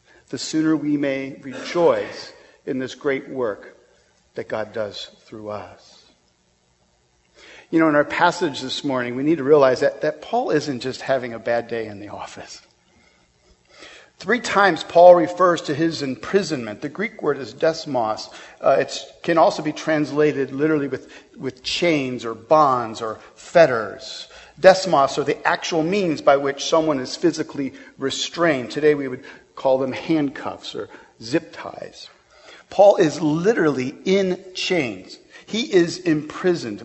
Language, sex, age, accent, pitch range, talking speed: English, male, 50-69, American, 125-175 Hz, 150 wpm